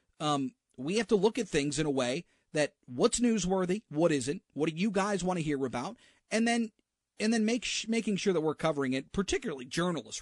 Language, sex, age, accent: English, male, 40-59, American